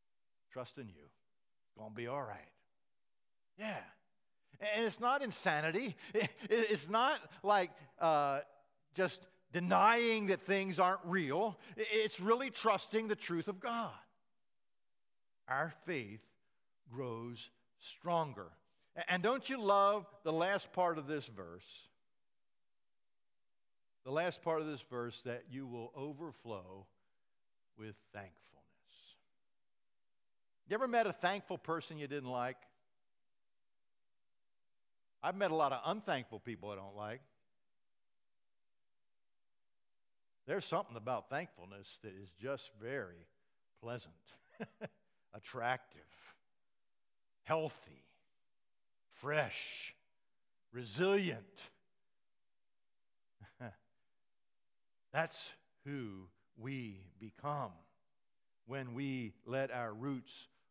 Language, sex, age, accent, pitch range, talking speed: English, male, 50-69, American, 110-185 Hz, 95 wpm